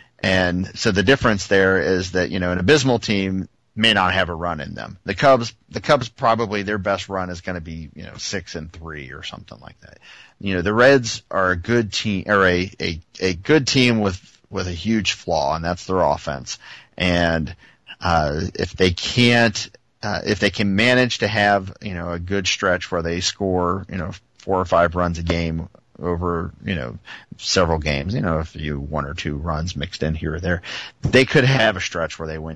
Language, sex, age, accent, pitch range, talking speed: English, male, 40-59, American, 85-105 Hz, 210 wpm